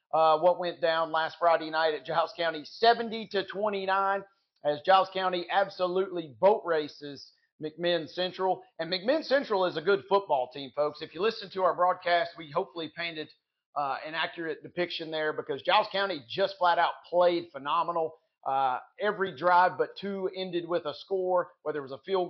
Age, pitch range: 40-59, 160-195 Hz